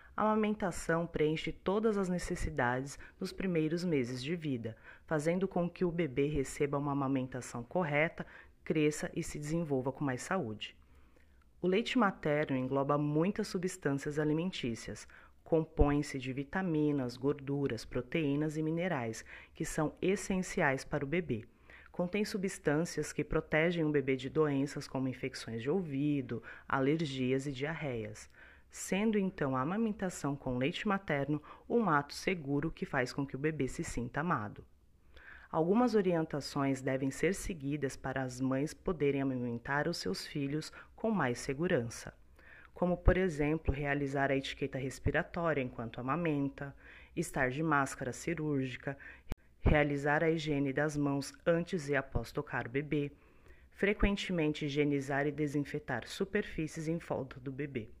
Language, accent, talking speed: Portuguese, Brazilian, 135 wpm